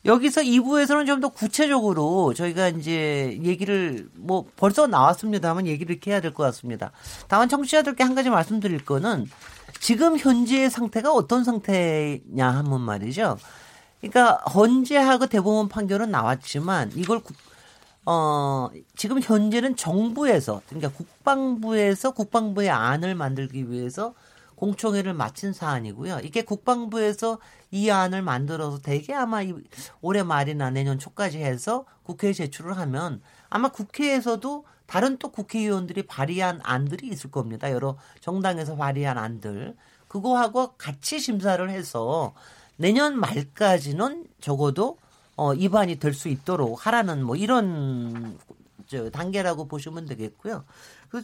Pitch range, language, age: 145-230 Hz, Korean, 40-59